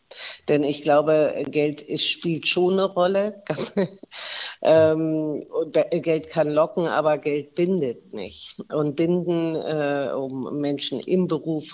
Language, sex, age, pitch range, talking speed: German, female, 50-69, 140-160 Hz, 130 wpm